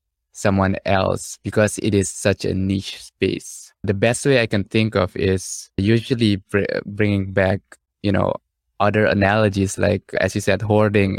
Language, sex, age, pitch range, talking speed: English, male, 20-39, 95-105 Hz, 155 wpm